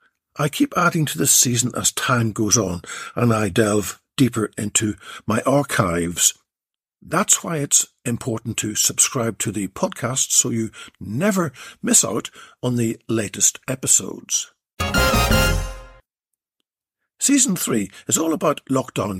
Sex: male